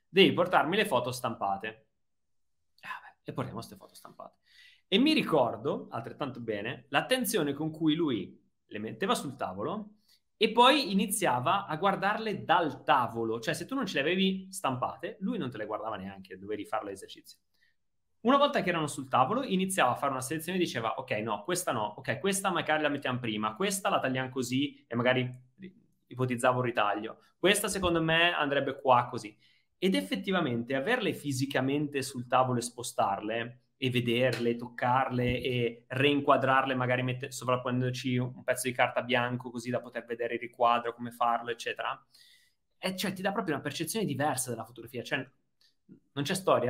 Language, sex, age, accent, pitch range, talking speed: Italian, male, 30-49, native, 120-175 Hz, 170 wpm